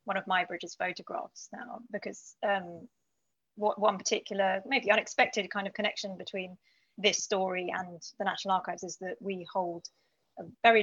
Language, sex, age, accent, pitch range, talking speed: English, female, 20-39, British, 180-210 Hz, 155 wpm